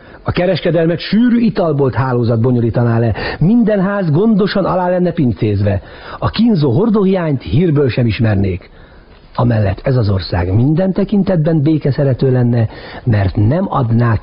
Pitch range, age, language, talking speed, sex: 105-165 Hz, 60-79, Hungarian, 130 wpm, male